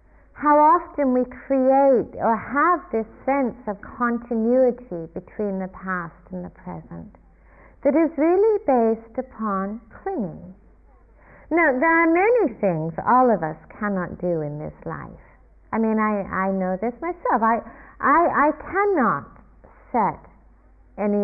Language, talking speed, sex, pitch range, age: English, 135 wpm, female, 190-260 Hz, 50-69